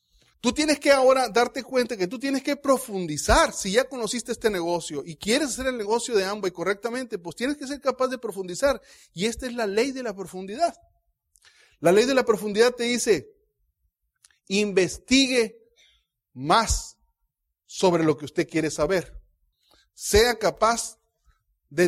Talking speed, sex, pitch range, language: 160 wpm, male, 145-225 Hz, Spanish